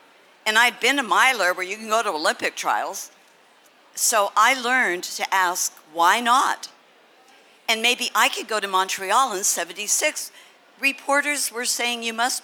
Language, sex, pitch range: English, female, 180-250 Hz